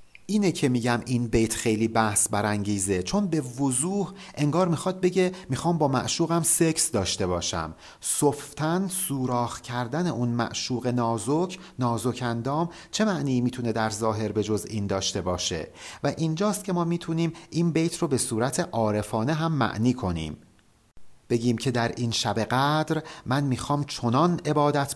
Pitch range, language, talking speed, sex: 115-155 Hz, Persian, 145 wpm, male